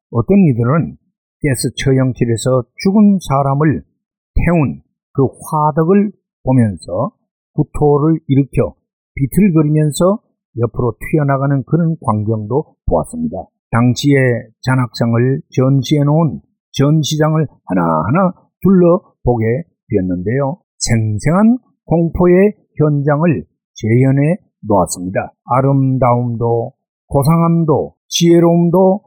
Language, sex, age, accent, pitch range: Korean, male, 50-69, native, 125-175 Hz